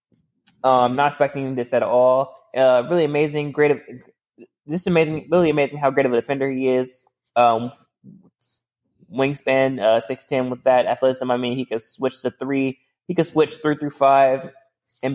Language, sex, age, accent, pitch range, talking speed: English, male, 20-39, American, 125-140 Hz, 175 wpm